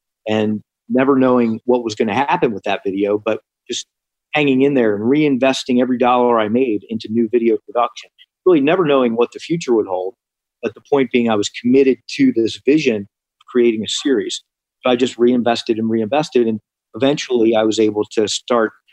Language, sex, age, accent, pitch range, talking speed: English, male, 40-59, American, 110-135 Hz, 195 wpm